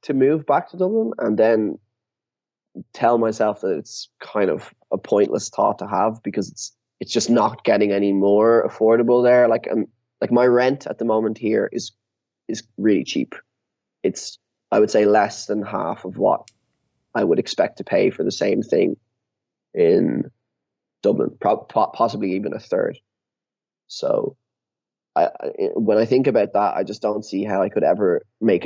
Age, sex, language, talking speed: 20-39, male, English, 170 wpm